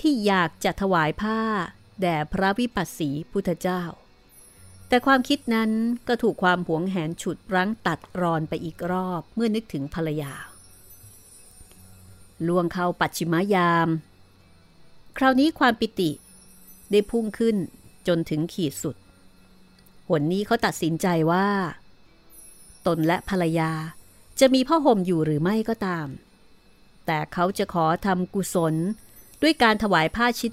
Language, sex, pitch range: Thai, female, 155-200 Hz